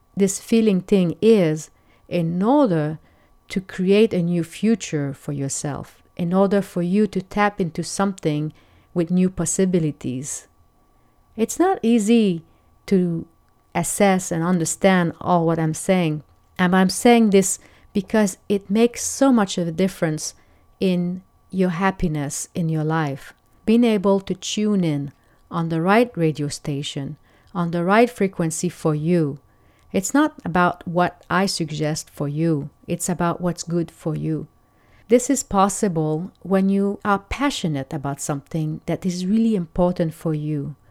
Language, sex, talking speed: English, female, 145 wpm